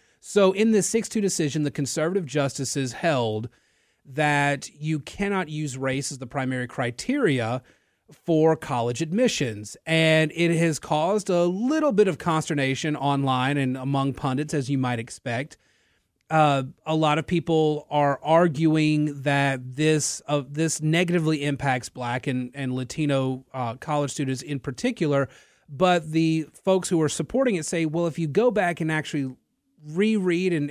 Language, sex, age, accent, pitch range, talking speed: English, male, 30-49, American, 140-170 Hz, 150 wpm